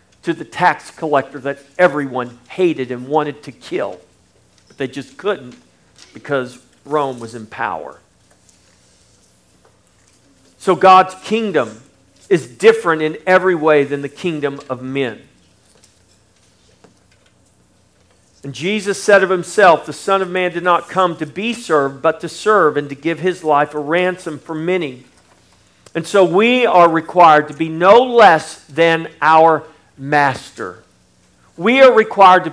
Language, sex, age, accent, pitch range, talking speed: English, male, 50-69, American, 140-190 Hz, 140 wpm